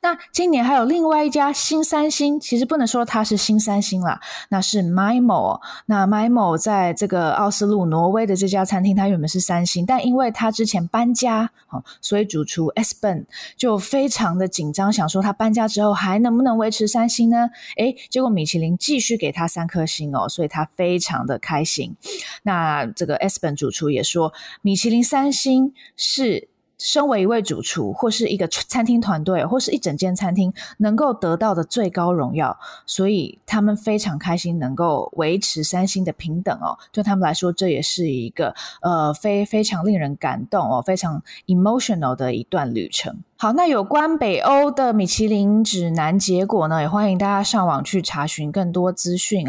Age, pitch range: 20-39, 165-235 Hz